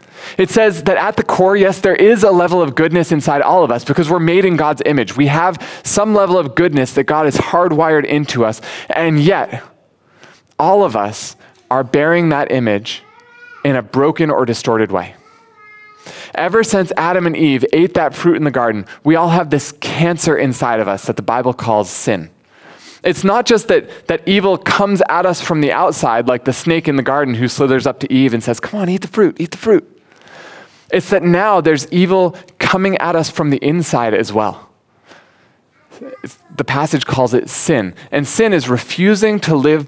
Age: 20-39